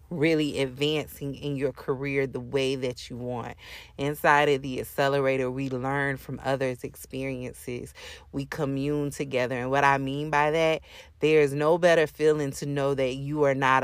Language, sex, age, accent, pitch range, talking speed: English, female, 30-49, American, 130-155 Hz, 165 wpm